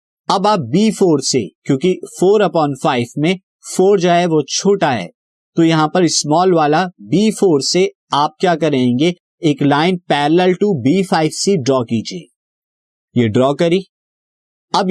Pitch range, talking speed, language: 135-180 Hz, 140 wpm, Hindi